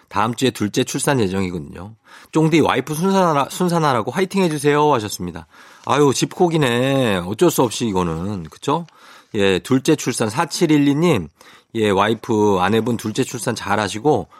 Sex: male